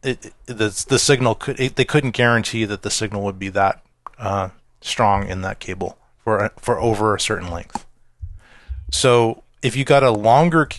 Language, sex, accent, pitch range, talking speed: English, male, American, 100-120 Hz, 185 wpm